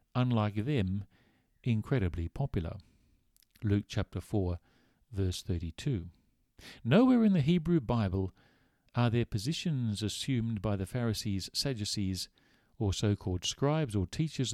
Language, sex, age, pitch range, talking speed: English, male, 50-69, 95-125 Hz, 110 wpm